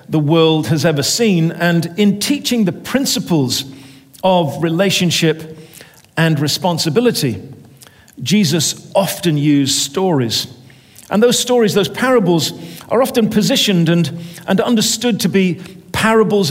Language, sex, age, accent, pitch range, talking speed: English, male, 50-69, British, 145-195 Hz, 115 wpm